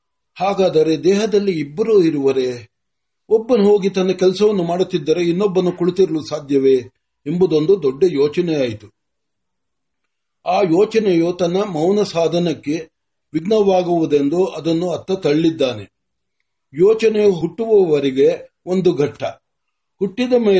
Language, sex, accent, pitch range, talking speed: Marathi, male, native, 145-205 Hz, 50 wpm